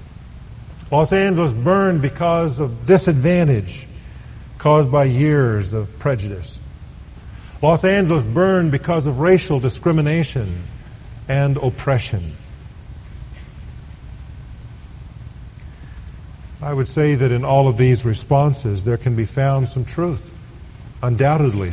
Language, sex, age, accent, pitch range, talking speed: English, male, 50-69, American, 110-150 Hz, 100 wpm